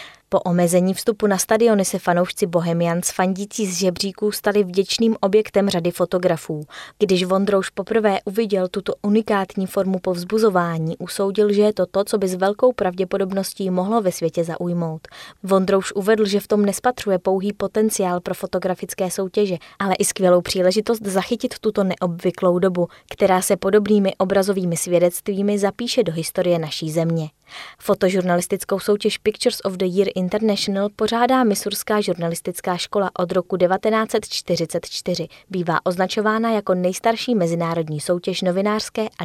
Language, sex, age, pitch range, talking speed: Czech, female, 20-39, 175-205 Hz, 140 wpm